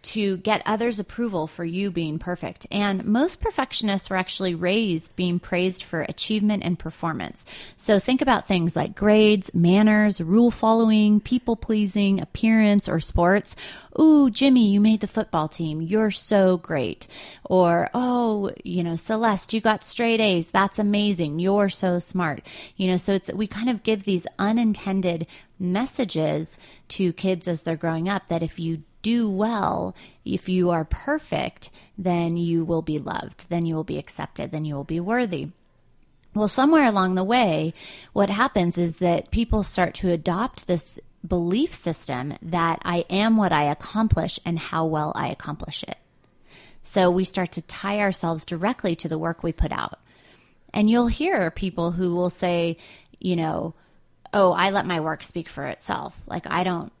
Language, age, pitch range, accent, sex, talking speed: English, 30-49, 170-215 Hz, American, female, 170 wpm